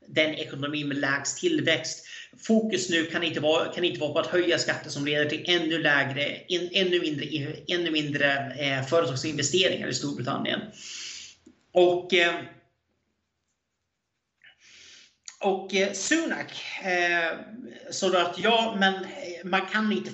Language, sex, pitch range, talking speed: Swedish, male, 155-195 Hz, 130 wpm